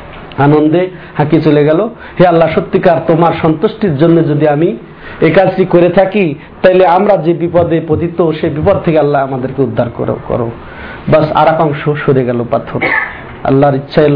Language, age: Bengali, 50-69